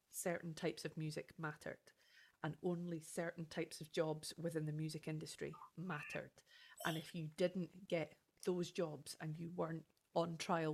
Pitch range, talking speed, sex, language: 160-190 Hz, 155 wpm, female, English